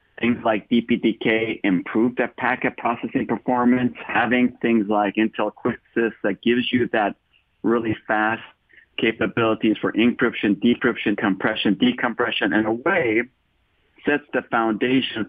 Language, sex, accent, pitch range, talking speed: English, male, American, 110-140 Hz, 120 wpm